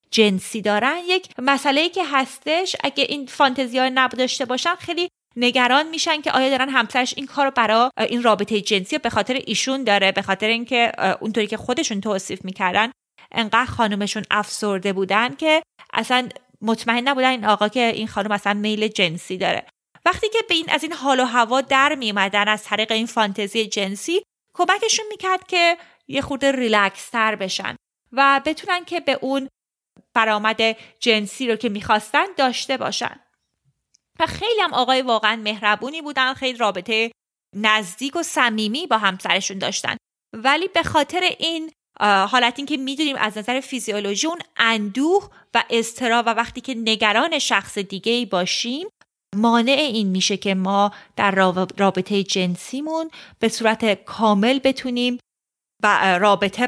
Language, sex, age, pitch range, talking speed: Persian, female, 30-49, 210-275 Hz, 150 wpm